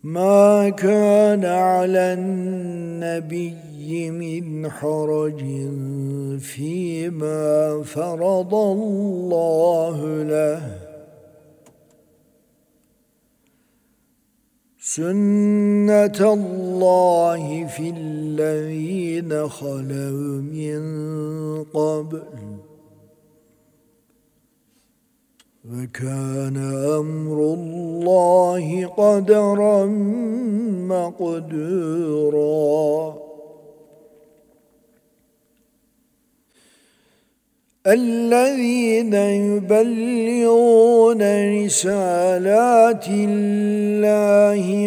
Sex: male